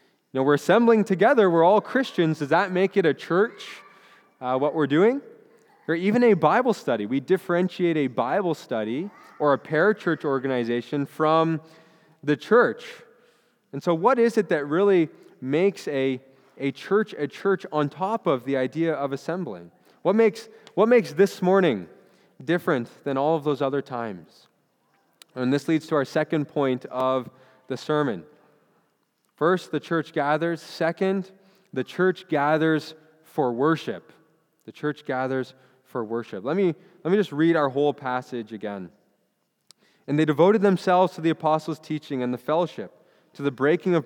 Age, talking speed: 20-39, 155 wpm